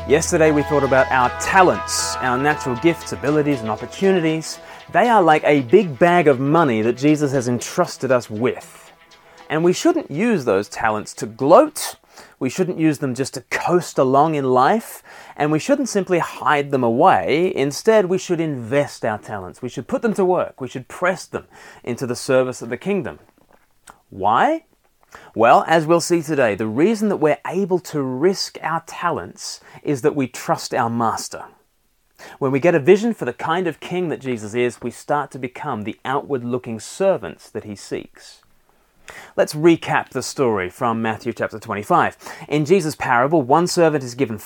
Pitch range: 125-175 Hz